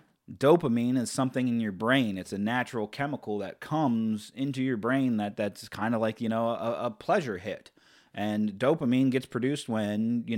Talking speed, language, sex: 185 wpm, English, male